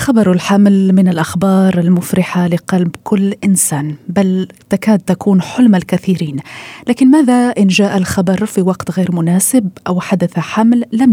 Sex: female